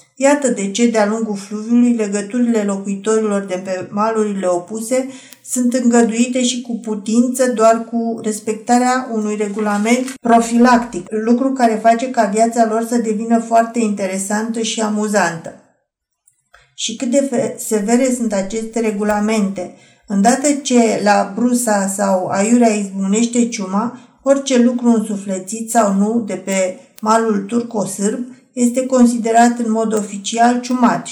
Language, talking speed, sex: Romanian, 125 wpm, female